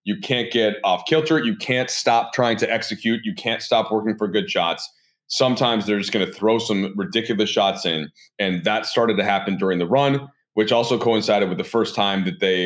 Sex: male